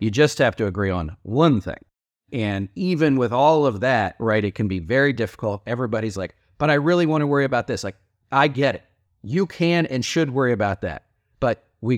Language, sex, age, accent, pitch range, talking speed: English, male, 40-59, American, 120-185 Hz, 215 wpm